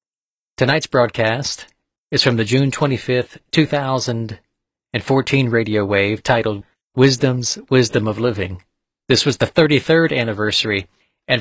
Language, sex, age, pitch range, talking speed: English, male, 40-59, 110-130 Hz, 110 wpm